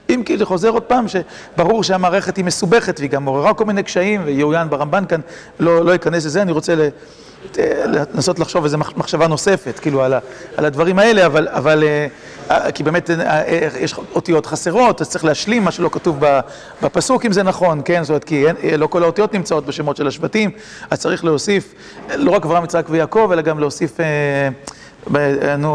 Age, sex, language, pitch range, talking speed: 40-59, male, Hebrew, 155-200 Hz, 170 wpm